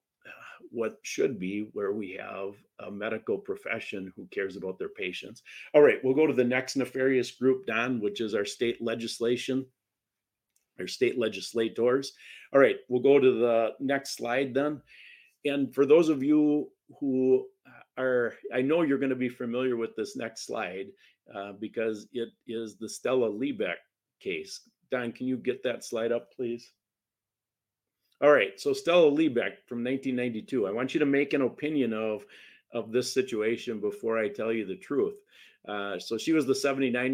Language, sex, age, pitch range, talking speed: English, male, 50-69, 110-135 Hz, 170 wpm